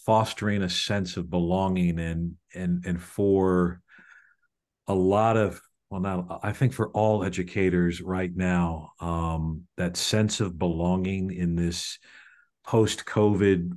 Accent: American